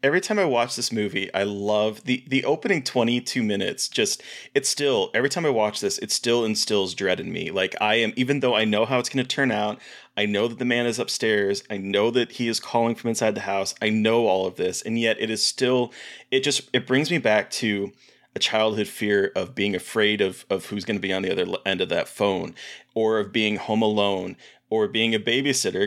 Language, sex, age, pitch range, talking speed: English, male, 30-49, 105-125 Hz, 235 wpm